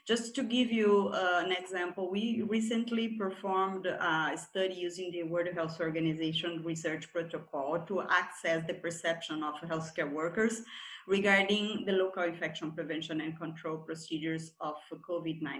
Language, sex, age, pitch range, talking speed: English, female, 30-49, 170-215 Hz, 140 wpm